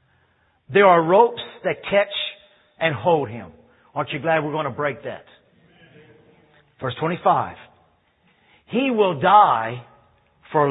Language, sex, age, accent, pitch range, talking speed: English, male, 50-69, American, 125-160 Hz, 125 wpm